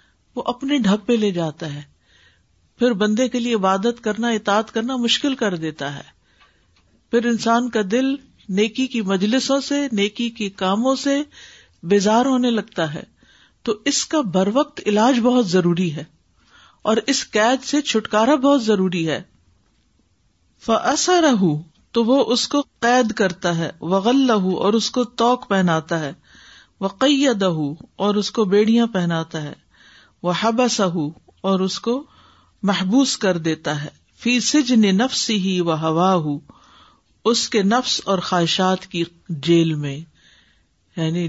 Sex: female